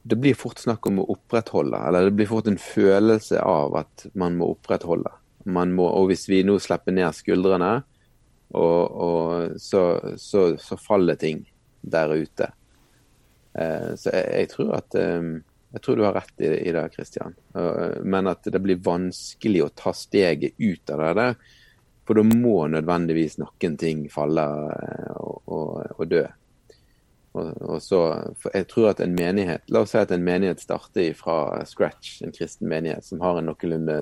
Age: 30-49